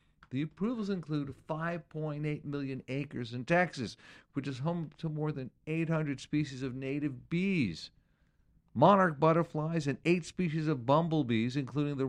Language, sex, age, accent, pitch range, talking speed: English, male, 50-69, American, 120-160 Hz, 140 wpm